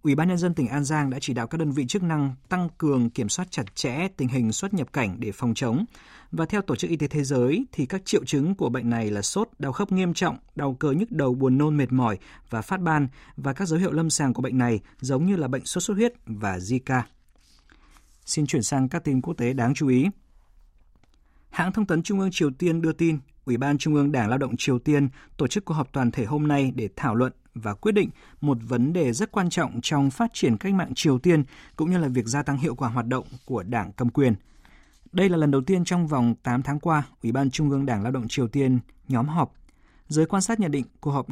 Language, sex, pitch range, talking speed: Vietnamese, male, 120-165 Hz, 255 wpm